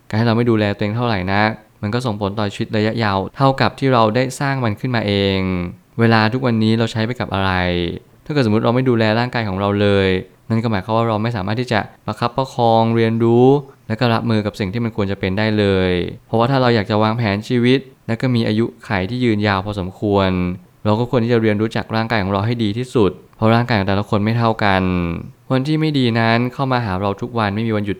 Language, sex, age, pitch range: Thai, male, 20-39, 100-120 Hz